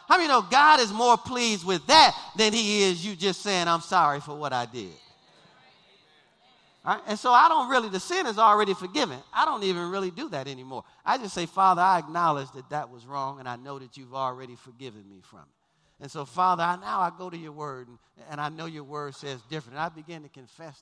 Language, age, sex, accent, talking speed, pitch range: English, 40-59, male, American, 235 wpm, 135-195 Hz